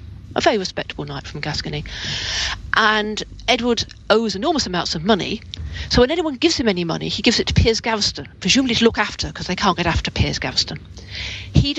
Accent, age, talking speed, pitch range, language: British, 40-59, 195 wpm, 140-215 Hz, English